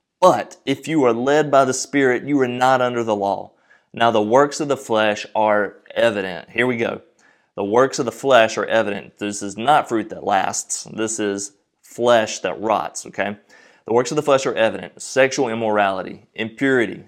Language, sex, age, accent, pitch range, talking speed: English, male, 30-49, American, 105-130 Hz, 190 wpm